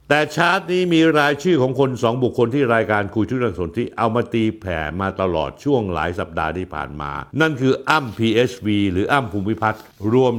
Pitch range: 95-135 Hz